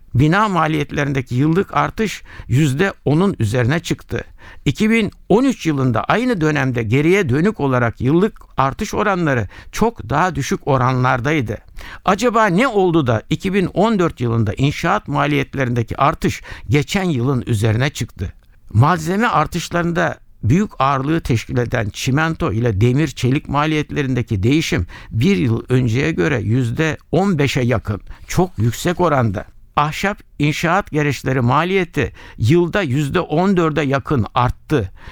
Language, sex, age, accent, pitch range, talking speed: Turkish, male, 60-79, native, 125-175 Hz, 105 wpm